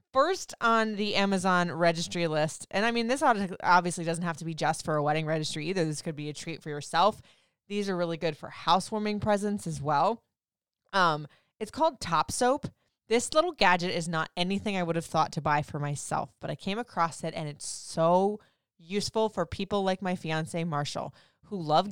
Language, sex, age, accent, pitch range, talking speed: English, female, 20-39, American, 160-205 Hz, 200 wpm